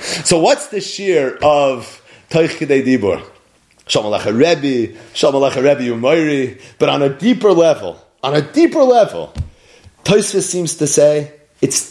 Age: 30-49